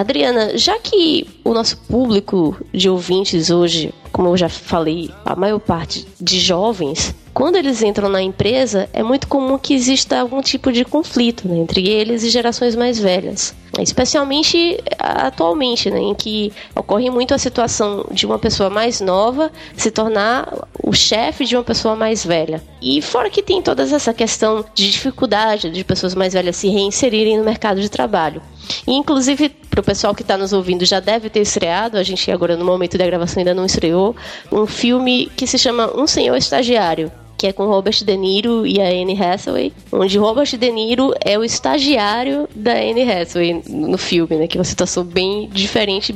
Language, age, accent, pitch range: Portuguese, 20-39, Brazilian, 185-245 Hz